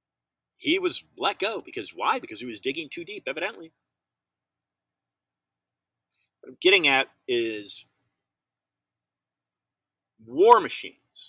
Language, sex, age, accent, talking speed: English, male, 30-49, American, 100 wpm